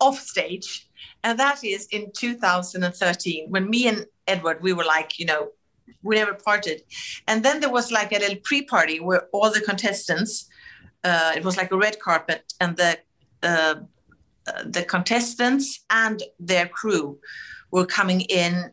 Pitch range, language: 160-220 Hz, English